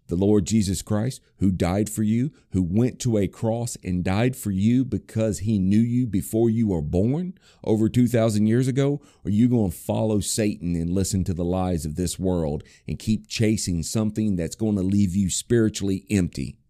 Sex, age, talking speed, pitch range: male, 40-59, 200 wpm, 95-120 Hz